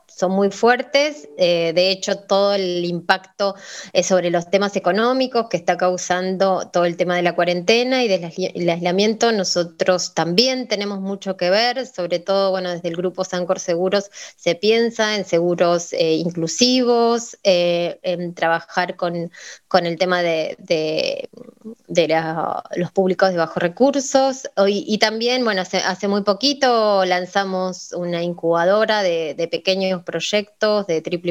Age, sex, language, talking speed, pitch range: 20-39, female, Spanish, 155 wpm, 175-210 Hz